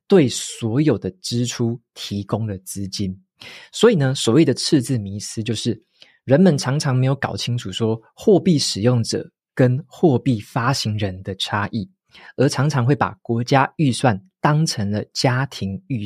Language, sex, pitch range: Chinese, male, 105-135 Hz